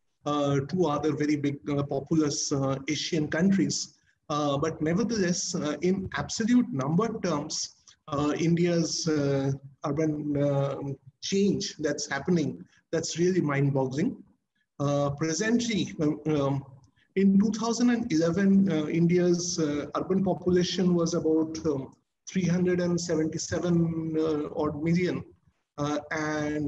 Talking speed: 105 wpm